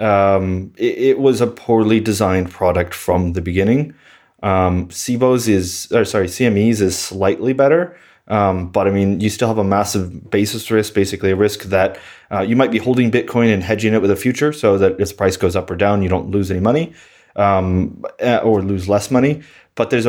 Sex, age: male, 30-49